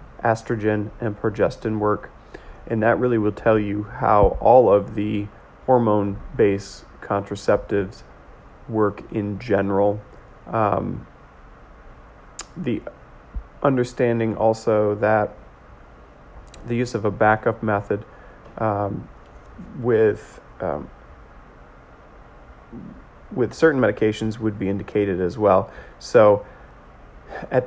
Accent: American